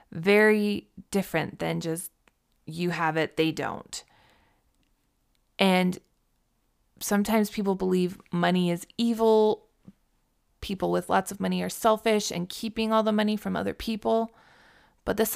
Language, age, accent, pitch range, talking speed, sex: English, 20-39, American, 175-210 Hz, 130 wpm, female